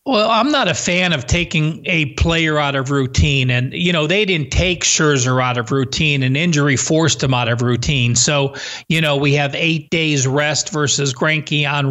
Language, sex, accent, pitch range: English, male, American, 150-200 Hz